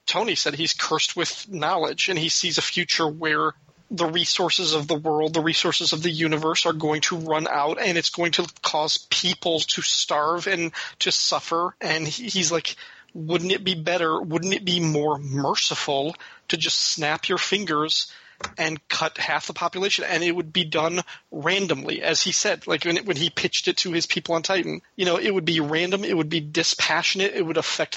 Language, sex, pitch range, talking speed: English, male, 160-185 Hz, 200 wpm